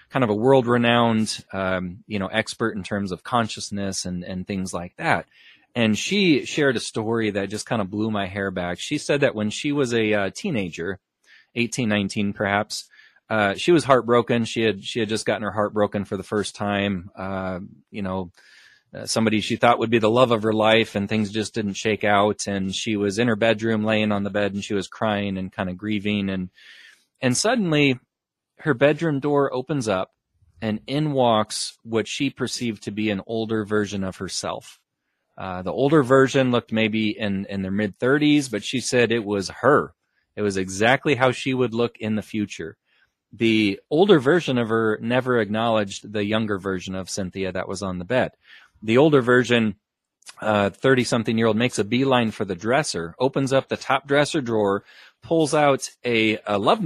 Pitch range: 100-125 Hz